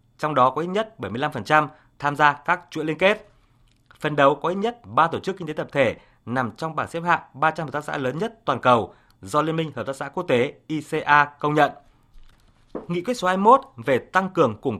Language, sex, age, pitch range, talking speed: Vietnamese, male, 20-39, 125-170 Hz, 225 wpm